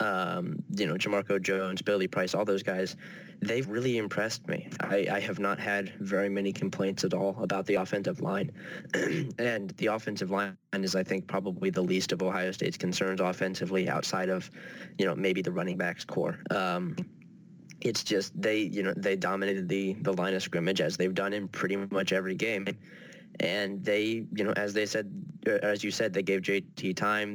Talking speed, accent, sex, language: 190 wpm, American, male, English